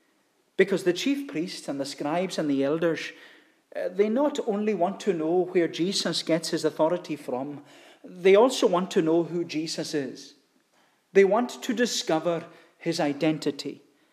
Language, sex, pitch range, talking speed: English, male, 165-225 Hz, 155 wpm